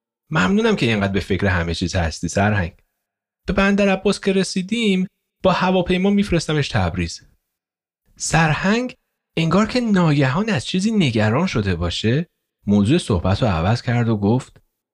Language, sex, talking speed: Persian, male, 135 wpm